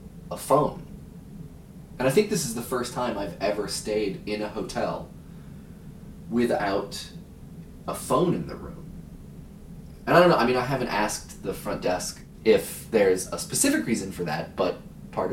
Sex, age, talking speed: male, 20-39, 170 wpm